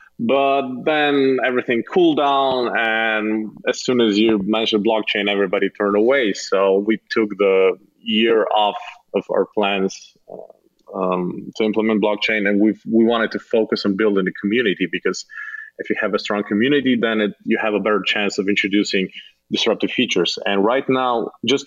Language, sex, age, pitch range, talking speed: English, male, 20-39, 105-125 Hz, 165 wpm